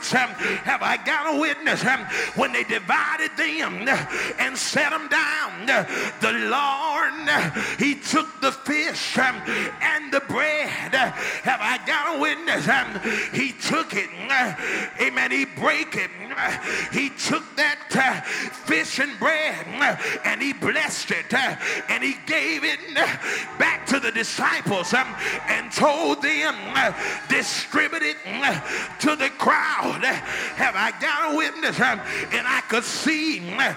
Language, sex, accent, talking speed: English, male, American, 125 wpm